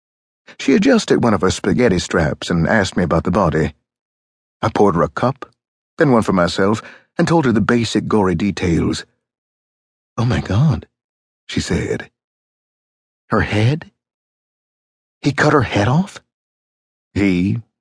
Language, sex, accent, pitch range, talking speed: English, male, American, 90-115 Hz, 140 wpm